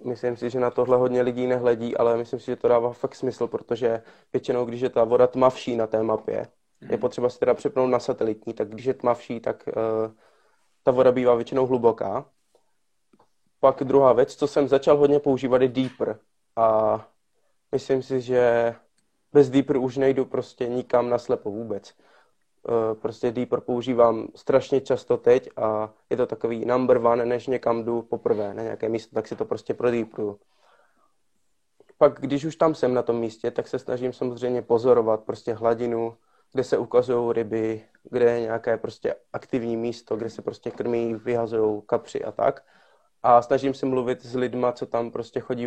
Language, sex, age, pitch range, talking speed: Czech, male, 20-39, 115-130 Hz, 175 wpm